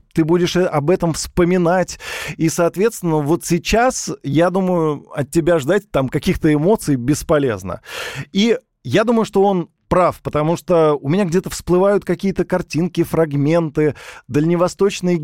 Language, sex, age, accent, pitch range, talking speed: Russian, male, 20-39, native, 145-180 Hz, 130 wpm